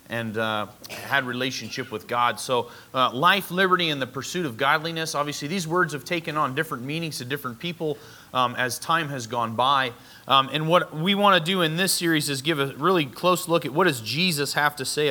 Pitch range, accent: 130-175 Hz, American